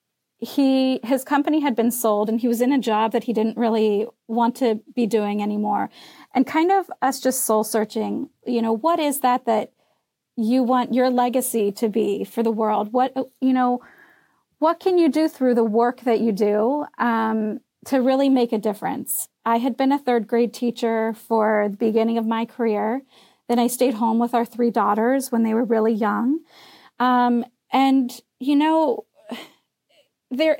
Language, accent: English, American